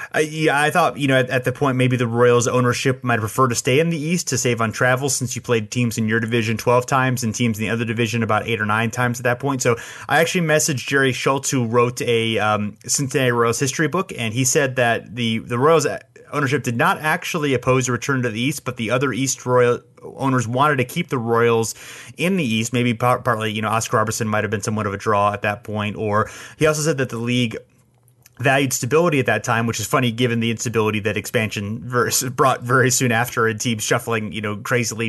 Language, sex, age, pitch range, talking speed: English, male, 30-49, 110-130 Hz, 240 wpm